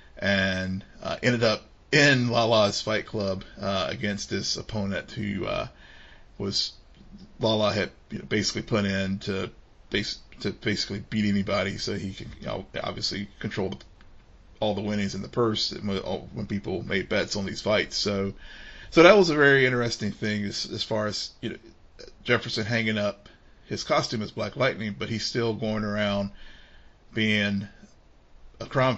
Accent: American